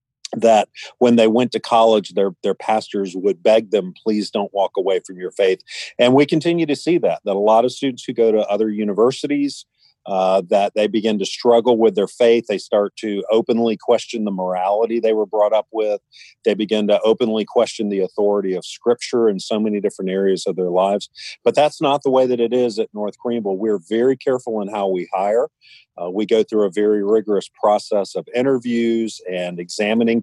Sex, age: male, 40-59